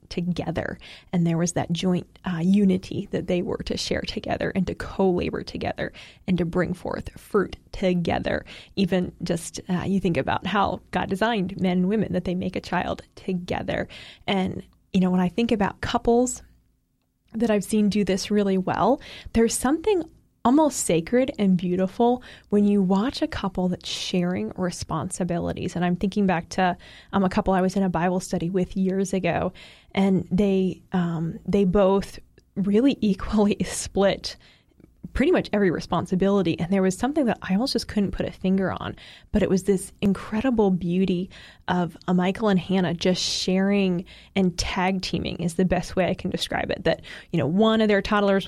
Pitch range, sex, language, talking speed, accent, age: 180-205 Hz, female, English, 180 wpm, American, 20-39